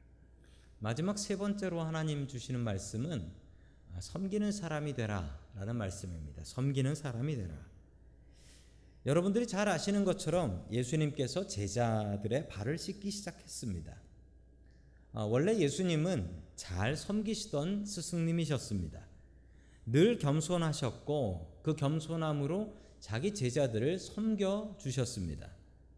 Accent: native